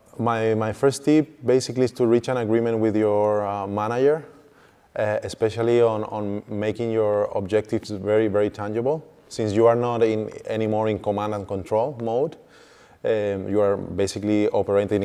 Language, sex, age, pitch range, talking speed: English, male, 20-39, 100-115 Hz, 160 wpm